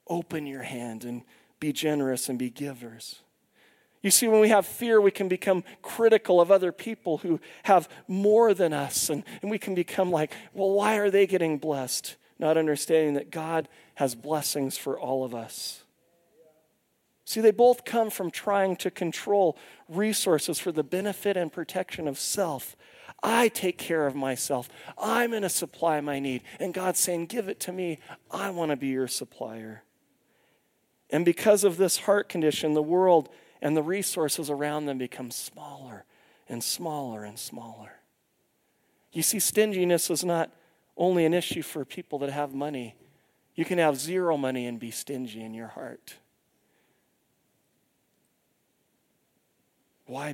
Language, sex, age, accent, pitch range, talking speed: English, male, 40-59, American, 140-190 Hz, 160 wpm